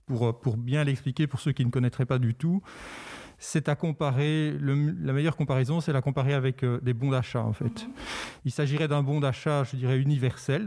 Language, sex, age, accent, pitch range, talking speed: French, male, 40-59, French, 125-145 Hz, 205 wpm